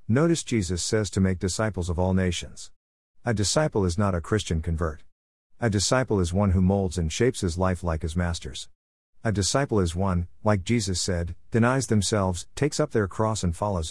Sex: male